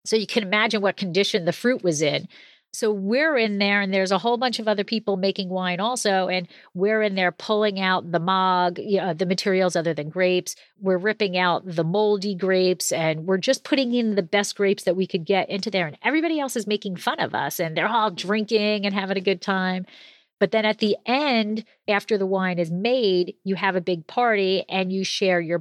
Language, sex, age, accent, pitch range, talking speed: English, female, 40-59, American, 180-215 Hz, 220 wpm